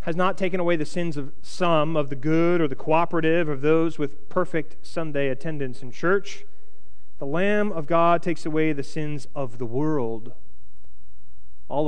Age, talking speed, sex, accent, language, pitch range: 40-59, 170 wpm, male, American, English, 130-180 Hz